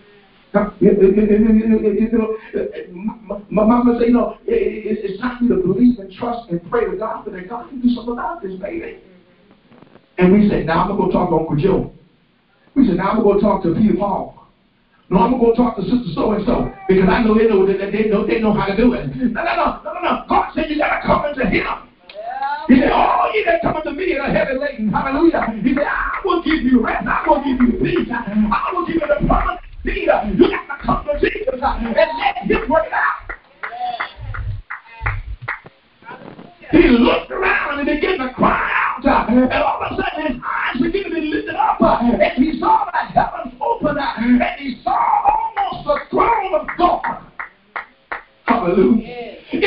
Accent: American